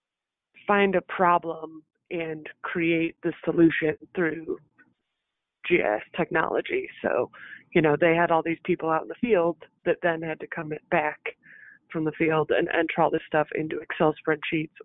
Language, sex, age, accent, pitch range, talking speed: English, female, 20-39, American, 155-180 Hz, 160 wpm